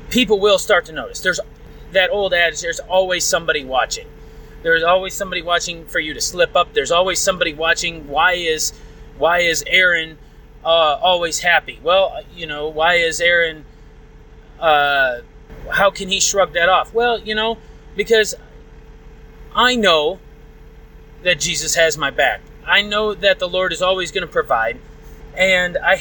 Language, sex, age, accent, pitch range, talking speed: English, male, 30-49, American, 155-210 Hz, 160 wpm